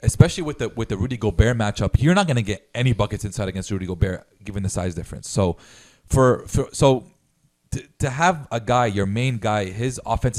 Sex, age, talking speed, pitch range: male, 30-49, 215 wpm, 105-135 Hz